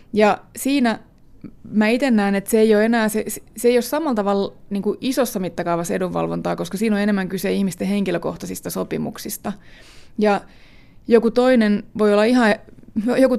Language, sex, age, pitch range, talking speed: Finnish, female, 20-39, 180-220 Hz, 155 wpm